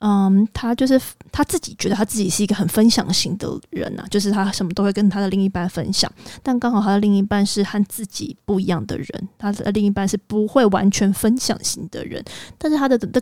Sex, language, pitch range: female, Chinese, 195-220 Hz